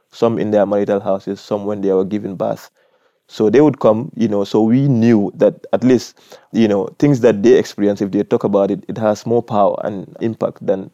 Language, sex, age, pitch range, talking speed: English, male, 20-39, 100-115 Hz, 225 wpm